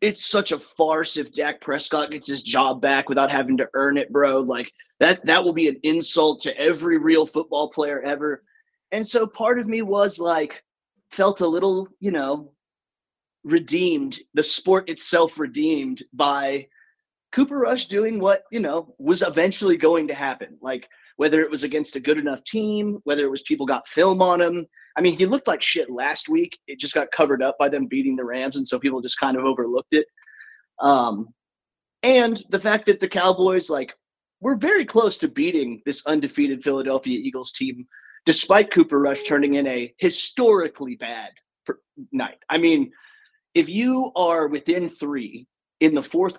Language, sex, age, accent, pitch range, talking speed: English, male, 30-49, American, 145-225 Hz, 180 wpm